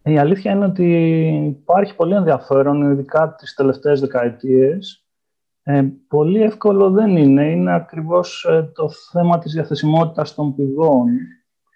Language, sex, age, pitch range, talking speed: Greek, male, 30-49, 140-175 Hz, 130 wpm